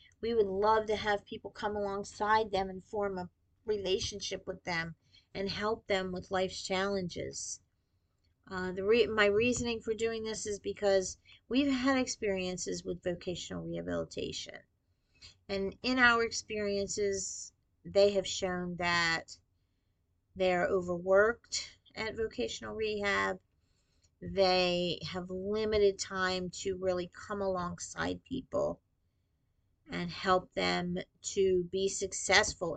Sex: female